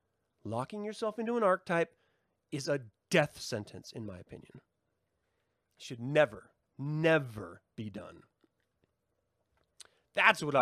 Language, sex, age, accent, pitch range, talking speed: English, male, 30-49, American, 110-145 Hz, 115 wpm